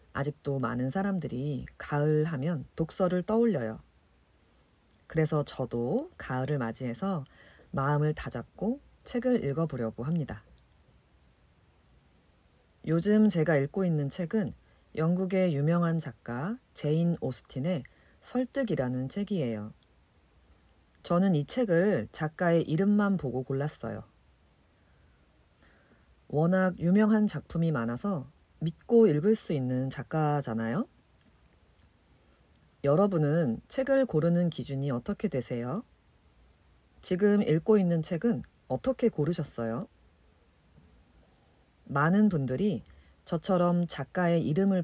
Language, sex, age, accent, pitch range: Korean, female, 40-59, native, 115-185 Hz